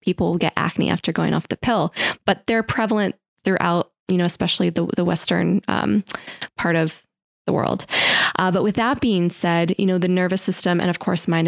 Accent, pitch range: American, 175-215 Hz